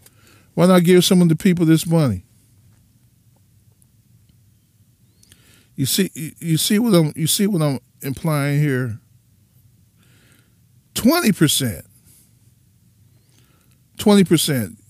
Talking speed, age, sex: 100 wpm, 40-59, male